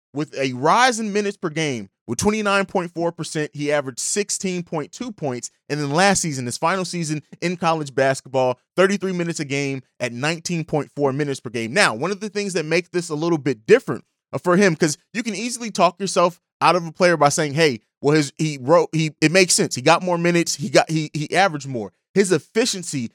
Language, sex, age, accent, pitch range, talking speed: English, male, 20-39, American, 150-195 Hz, 205 wpm